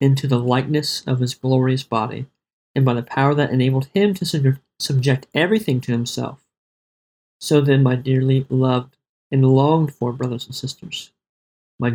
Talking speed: 155 wpm